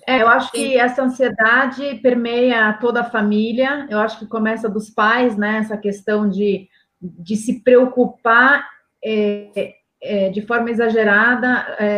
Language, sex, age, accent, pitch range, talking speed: Portuguese, female, 30-49, Brazilian, 205-240 Hz, 125 wpm